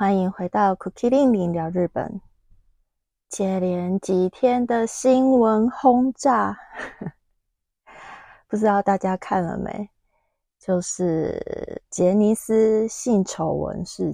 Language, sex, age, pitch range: Chinese, female, 20-39, 185-225 Hz